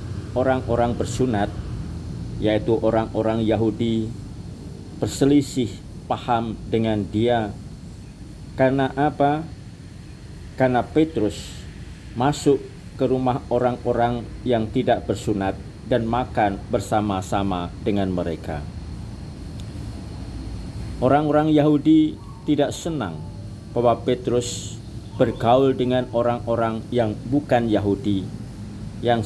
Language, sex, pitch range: Indonesian, male, 100-125 Hz